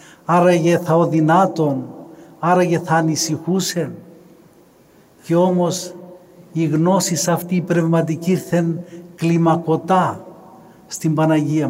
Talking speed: 80 wpm